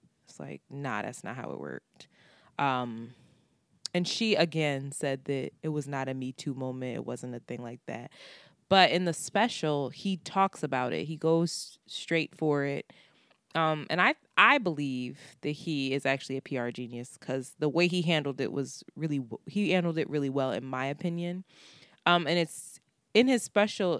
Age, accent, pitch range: 20-39, American, 140-165 Hz